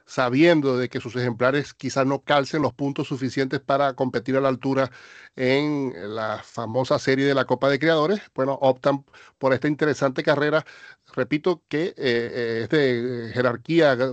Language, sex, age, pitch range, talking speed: Spanish, male, 40-59, 125-150 Hz, 155 wpm